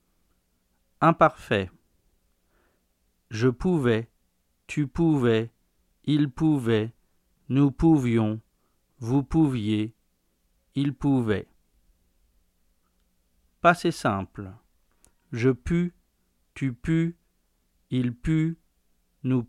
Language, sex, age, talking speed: French, male, 50-69, 70 wpm